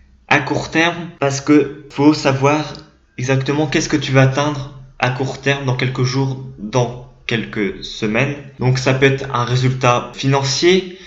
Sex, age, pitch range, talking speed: male, 20-39, 125-140 Hz, 165 wpm